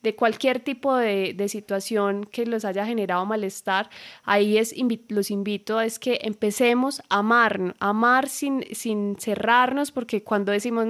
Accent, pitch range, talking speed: Colombian, 200-230 Hz, 145 wpm